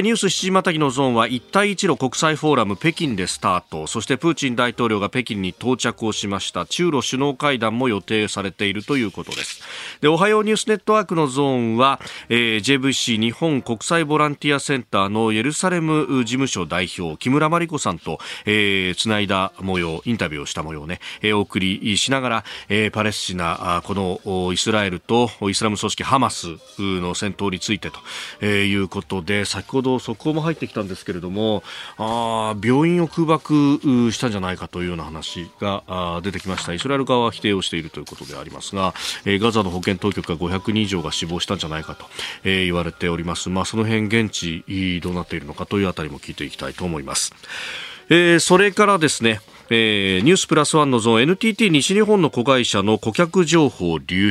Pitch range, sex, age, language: 95-140 Hz, male, 40-59, Japanese